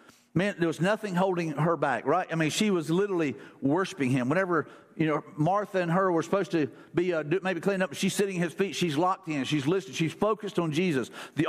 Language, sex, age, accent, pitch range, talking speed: English, male, 50-69, American, 170-210 Hz, 230 wpm